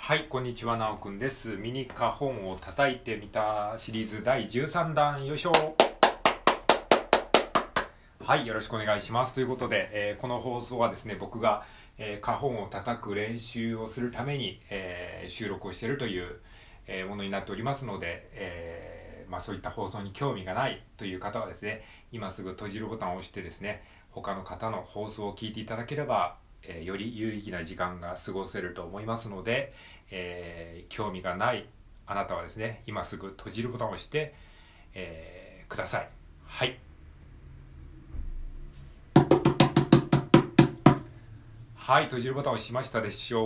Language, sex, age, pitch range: Japanese, male, 40-59, 95-120 Hz